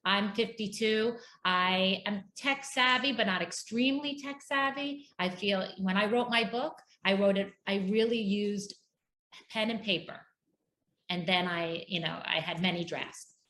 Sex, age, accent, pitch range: female, 30-49, American, 170-205 Hz